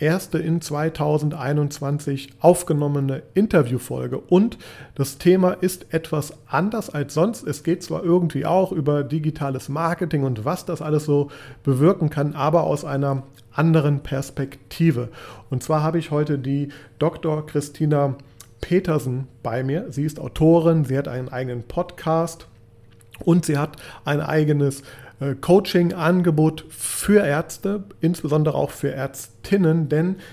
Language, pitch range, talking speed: German, 135-160 Hz, 135 wpm